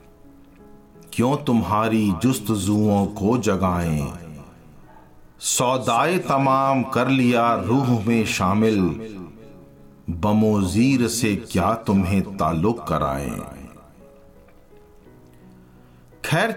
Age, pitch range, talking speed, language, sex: 50-69, 90-125 Hz, 70 wpm, Hindi, male